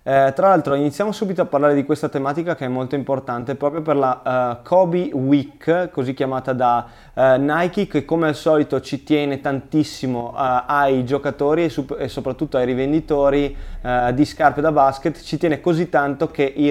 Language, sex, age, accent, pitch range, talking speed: Italian, male, 20-39, native, 130-150 Hz, 170 wpm